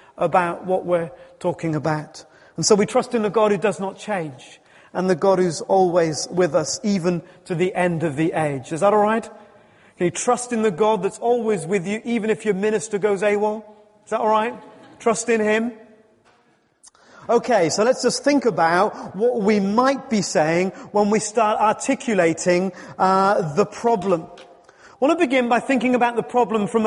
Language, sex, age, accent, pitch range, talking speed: English, male, 30-49, British, 185-255 Hz, 190 wpm